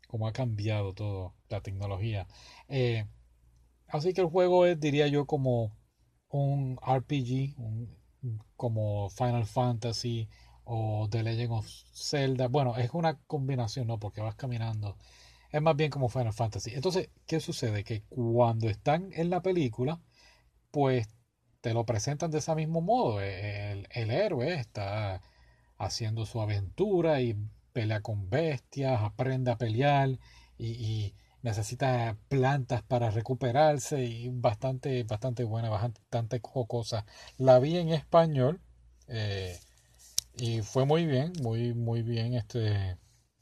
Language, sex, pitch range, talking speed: Spanish, male, 110-135 Hz, 135 wpm